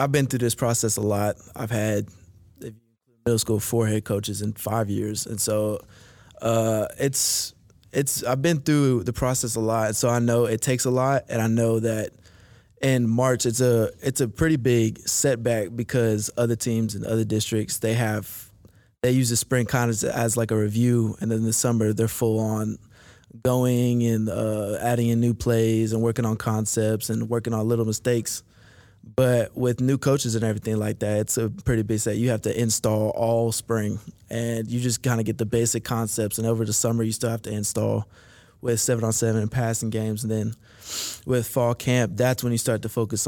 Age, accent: 20-39, American